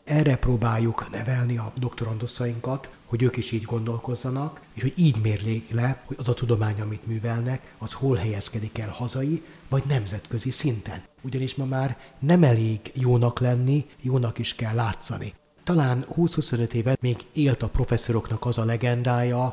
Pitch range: 115-130 Hz